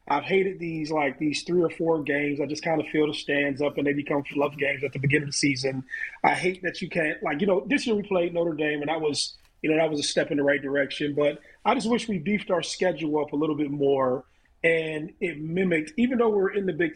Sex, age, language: male, 30-49, English